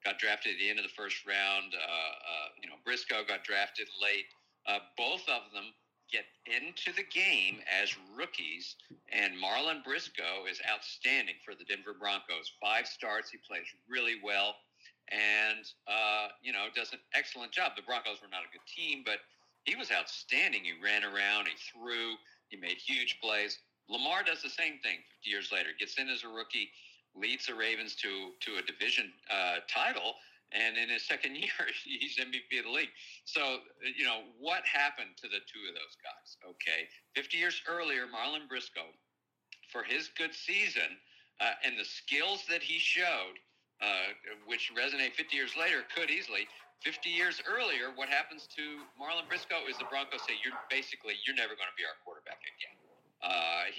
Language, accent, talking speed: English, American, 180 wpm